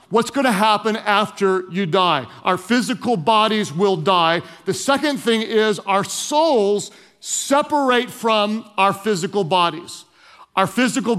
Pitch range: 205-260 Hz